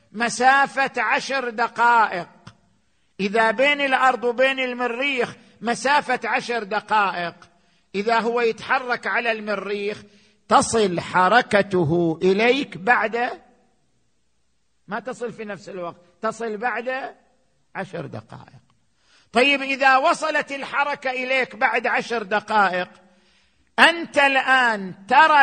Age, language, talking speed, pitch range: 50-69, Arabic, 95 wpm, 215-265 Hz